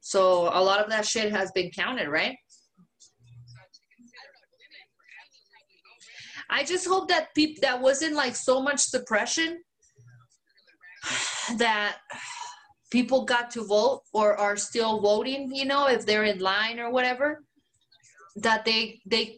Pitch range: 195-265 Hz